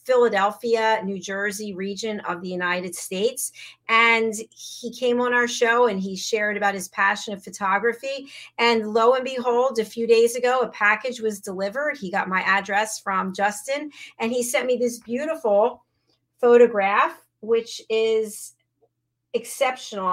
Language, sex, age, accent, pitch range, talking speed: English, female, 40-59, American, 205-245 Hz, 150 wpm